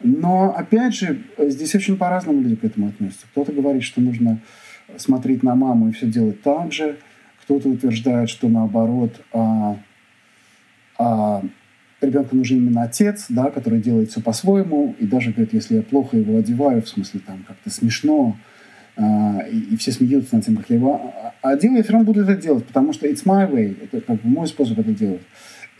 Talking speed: 170 wpm